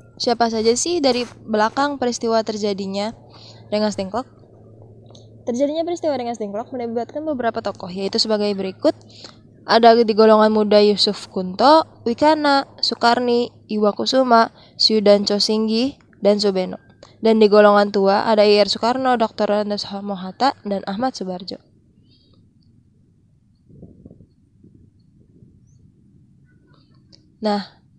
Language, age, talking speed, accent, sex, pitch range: Indonesian, 20-39, 100 wpm, native, female, 200-235 Hz